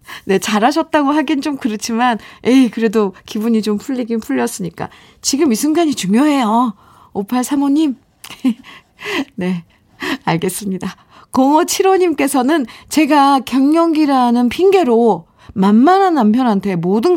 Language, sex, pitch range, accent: Korean, female, 180-260 Hz, native